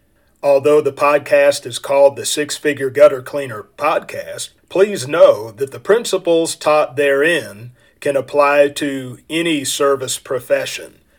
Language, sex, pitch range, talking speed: English, male, 130-150 Hz, 125 wpm